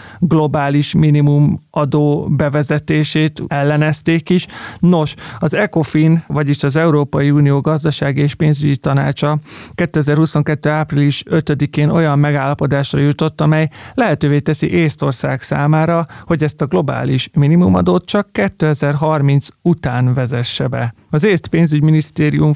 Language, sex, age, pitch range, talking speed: Hungarian, male, 30-49, 140-160 Hz, 110 wpm